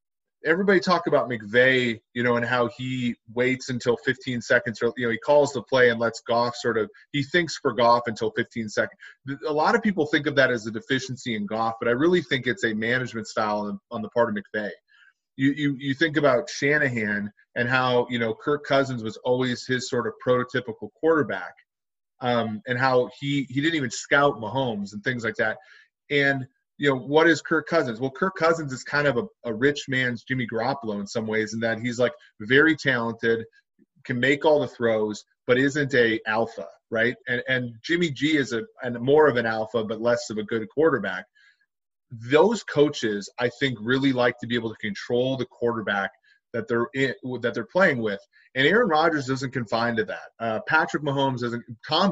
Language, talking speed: English, 205 wpm